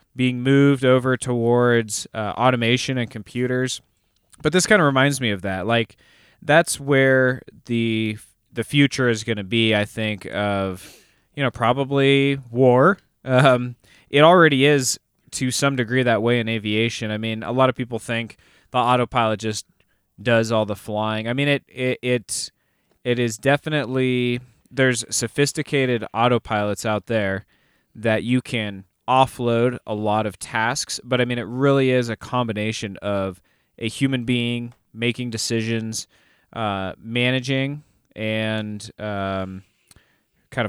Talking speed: 145 wpm